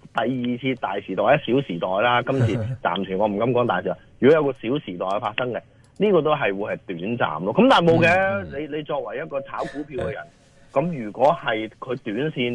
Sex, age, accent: male, 30-49, native